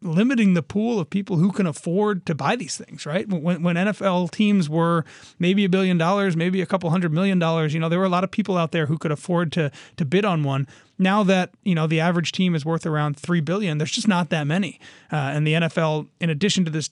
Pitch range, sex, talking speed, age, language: 150-185 Hz, male, 250 wpm, 30-49, English